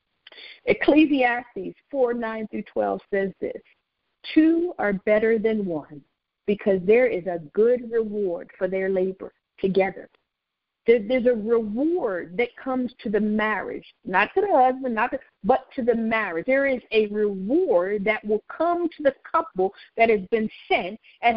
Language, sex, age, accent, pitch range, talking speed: English, female, 50-69, American, 230-305 Hz, 155 wpm